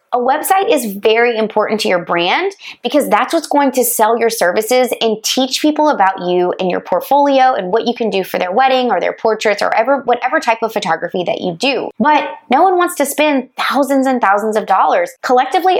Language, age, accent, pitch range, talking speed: English, 20-39, American, 205-265 Hz, 215 wpm